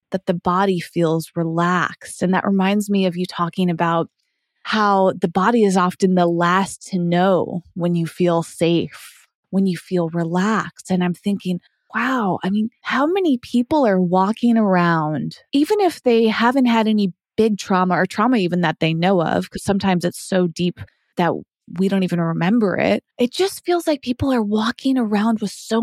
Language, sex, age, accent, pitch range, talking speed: English, female, 20-39, American, 180-250 Hz, 180 wpm